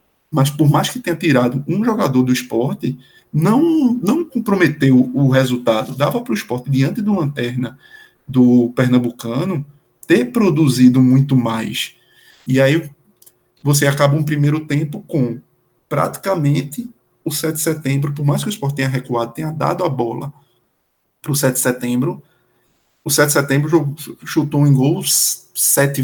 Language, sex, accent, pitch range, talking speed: Portuguese, male, Brazilian, 125-170 Hz, 150 wpm